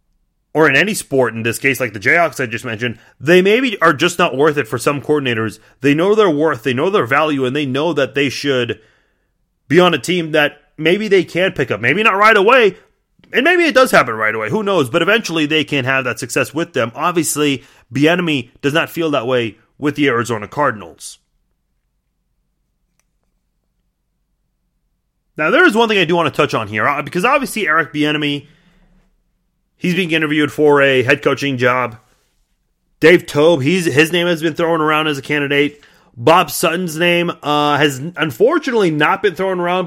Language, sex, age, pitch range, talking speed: English, male, 30-49, 135-175 Hz, 190 wpm